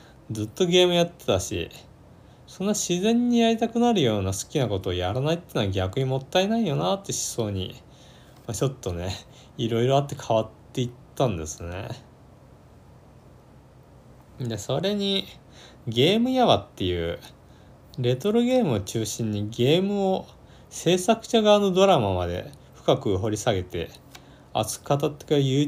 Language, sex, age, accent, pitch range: Japanese, male, 20-39, native, 110-180 Hz